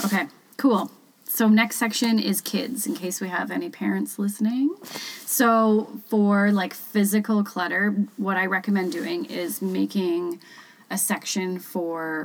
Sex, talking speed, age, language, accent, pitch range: female, 135 wpm, 30-49, English, American, 195-235 Hz